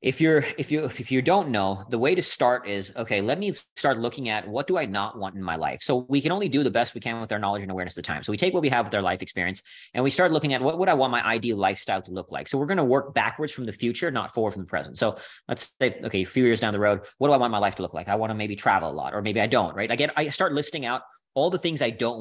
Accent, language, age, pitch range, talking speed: American, English, 30-49, 105-145 Hz, 330 wpm